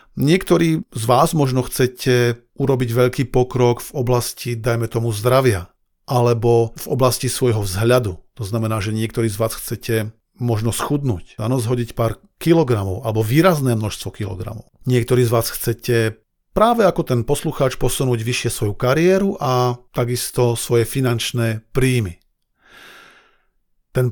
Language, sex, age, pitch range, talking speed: Slovak, male, 40-59, 115-150 Hz, 130 wpm